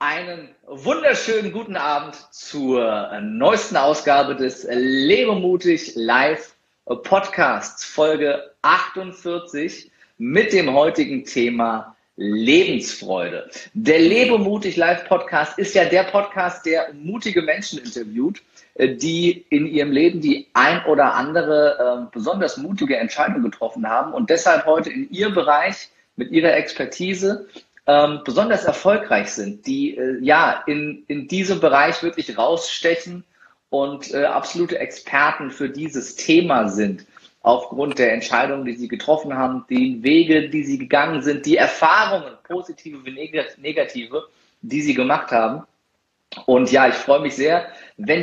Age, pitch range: 40-59, 140-205 Hz